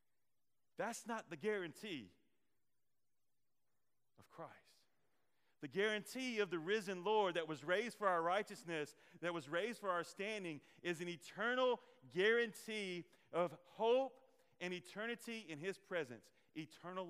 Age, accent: 40-59, American